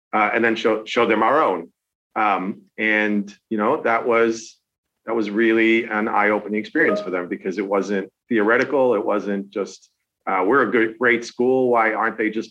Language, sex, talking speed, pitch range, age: English, male, 185 wpm, 105-125 Hz, 40-59